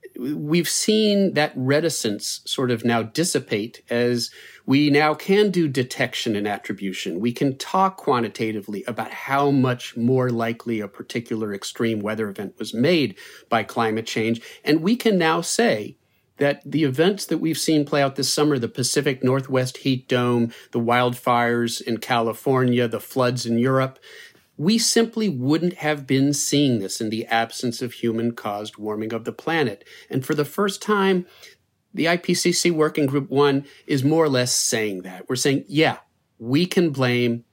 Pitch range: 115-150 Hz